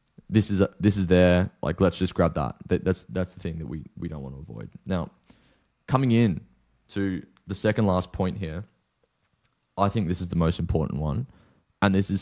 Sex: male